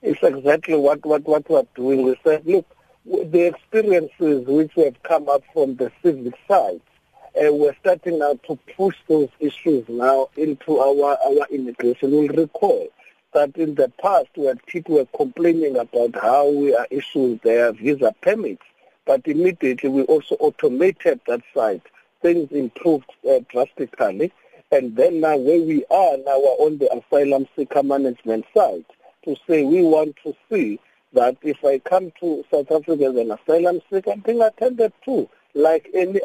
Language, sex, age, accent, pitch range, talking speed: English, male, 50-69, South African, 140-230 Hz, 165 wpm